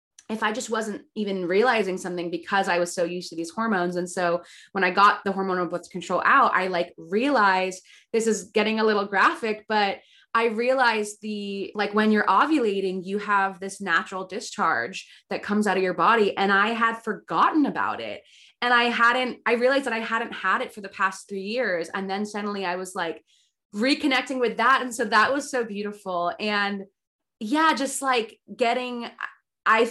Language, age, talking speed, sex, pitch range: English, 20-39, 190 wpm, female, 185-230 Hz